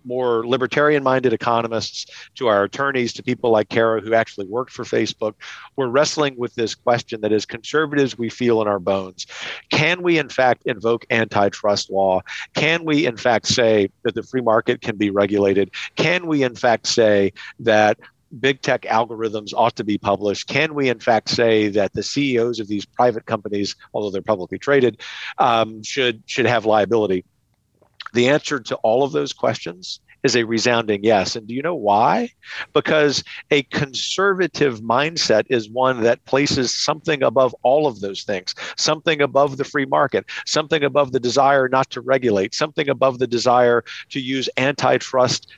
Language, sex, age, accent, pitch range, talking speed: English, male, 50-69, American, 110-145 Hz, 170 wpm